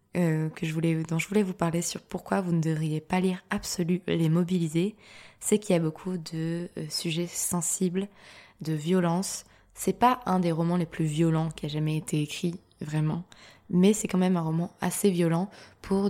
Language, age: French, 20-39